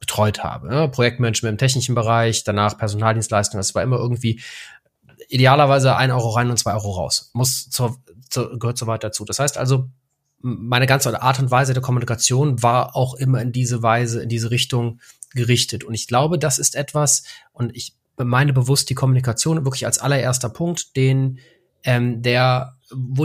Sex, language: male, German